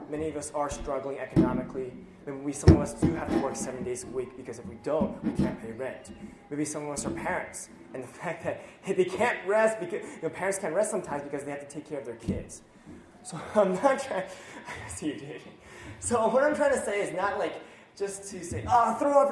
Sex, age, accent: male, 20-39, American